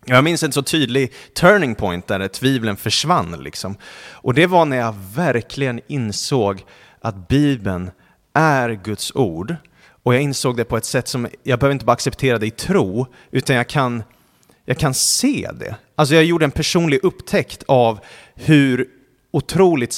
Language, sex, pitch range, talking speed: Swedish, male, 110-135 Hz, 165 wpm